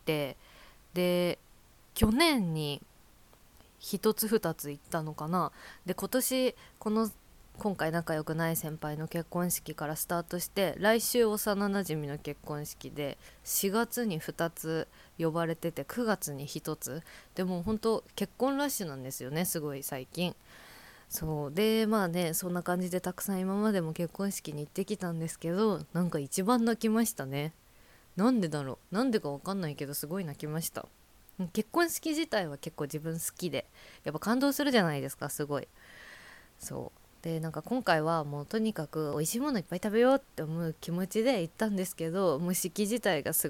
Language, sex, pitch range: Japanese, female, 155-205 Hz